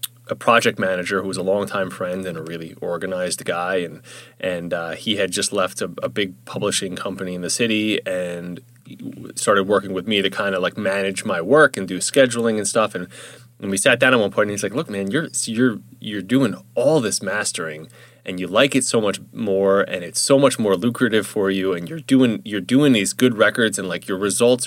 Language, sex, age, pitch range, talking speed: English, male, 20-39, 95-120 Hz, 225 wpm